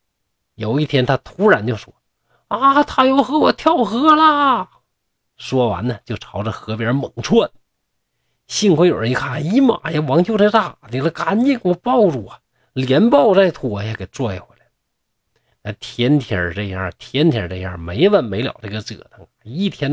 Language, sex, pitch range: Chinese, male, 110-155 Hz